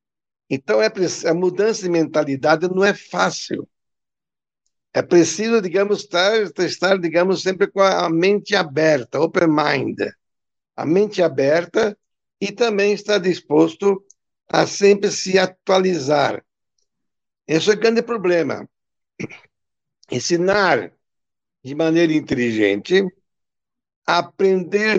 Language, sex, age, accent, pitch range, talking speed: Portuguese, male, 60-79, Brazilian, 140-195 Hz, 100 wpm